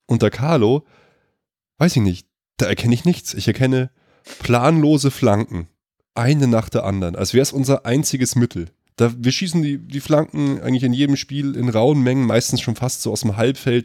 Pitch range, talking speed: 105-135 Hz, 180 wpm